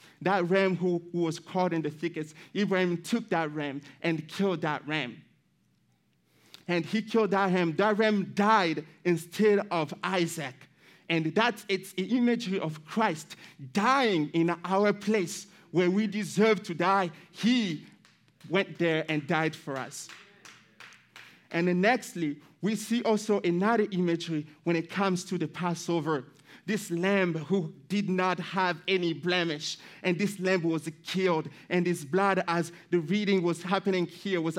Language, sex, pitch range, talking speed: English, male, 165-195 Hz, 155 wpm